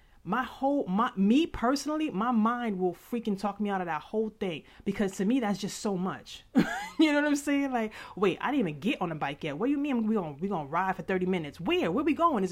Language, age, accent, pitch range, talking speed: English, 30-49, American, 170-230 Hz, 265 wpm